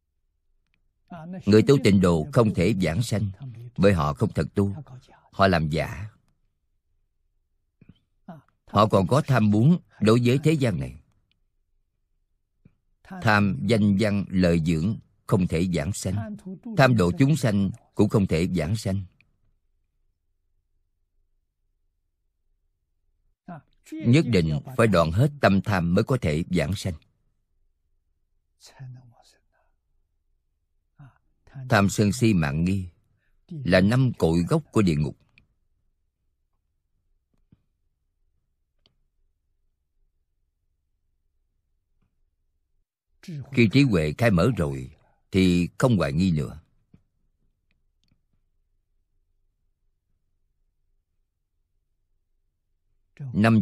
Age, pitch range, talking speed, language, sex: 50-69, 80-105 Hz, 90 wpm, Vietnamese, male